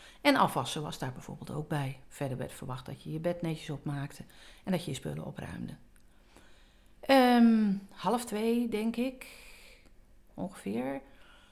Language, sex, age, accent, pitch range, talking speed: Dutch, female, 50-69, Dutch, 160-230 Hz, 140 wpm